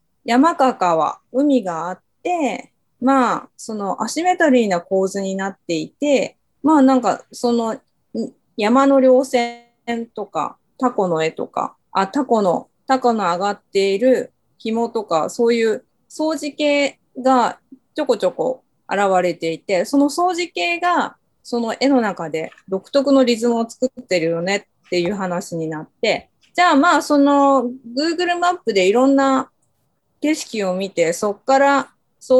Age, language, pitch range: 20-39, Japanese, 220-290 Hz